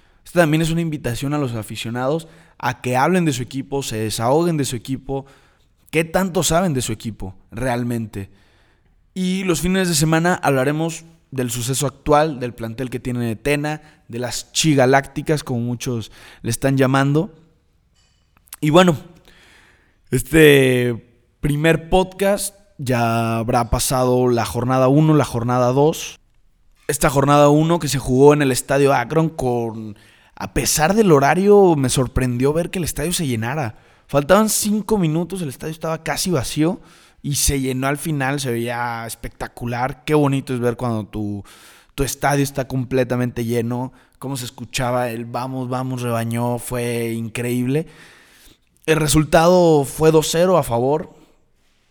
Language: Spanish